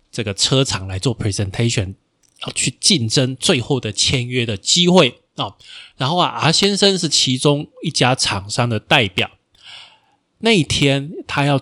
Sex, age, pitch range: male, 20-39, 110-155 Hz